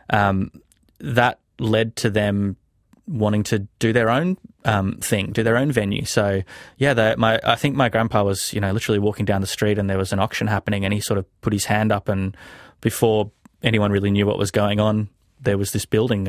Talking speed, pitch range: 215 wpm, 105-115 Hz